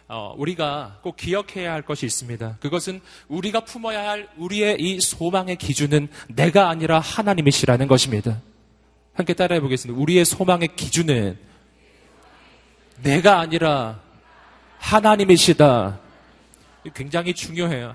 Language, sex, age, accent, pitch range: Korean, male, 30-49, native, 140-235 Hz